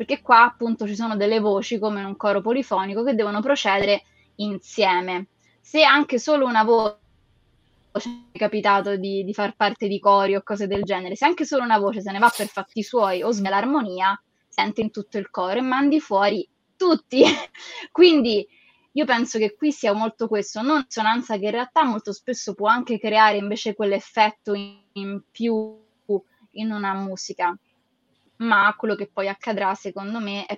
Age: 20-39